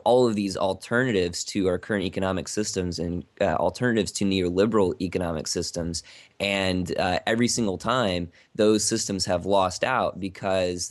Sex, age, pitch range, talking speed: male, 20-39, 90-105 Hz, 150 wpm